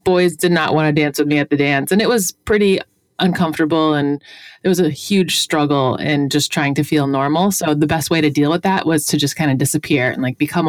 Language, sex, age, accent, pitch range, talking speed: English, female, 30-49, American, 150-190 Hz, 255 wpm